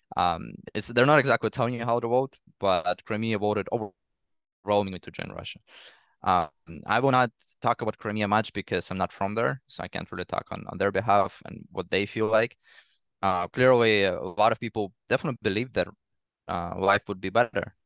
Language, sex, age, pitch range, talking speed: English, male, 20-39, 95-115 Hz, 200 wpm